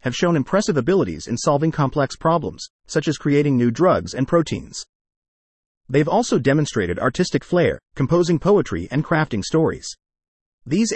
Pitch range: 115-175 Hz